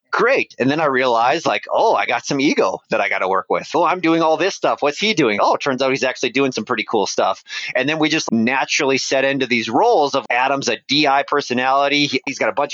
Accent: American